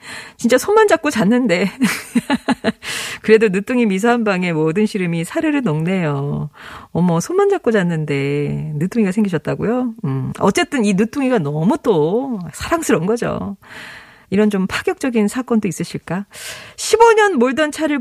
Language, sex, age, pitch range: Korean, female, 40-59, 170-260 Hz